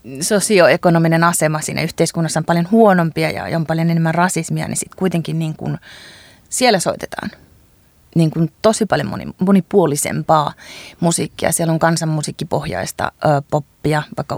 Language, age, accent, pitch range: Finnish, 30-49, native, 165-195 Hz